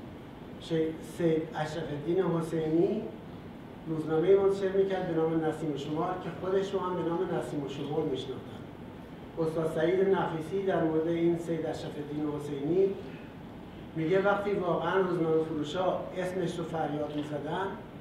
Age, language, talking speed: 60-79, Persian, 140 wpm